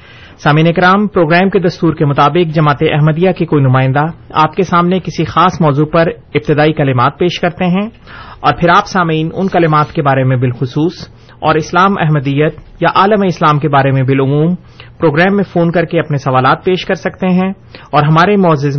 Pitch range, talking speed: 140-175 Hz, 185 wpm